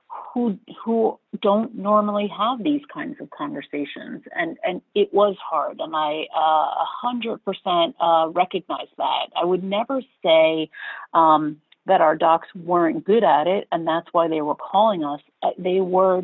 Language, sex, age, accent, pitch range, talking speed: English, female, 40-59, American, 175-225 Hz, 160 wpm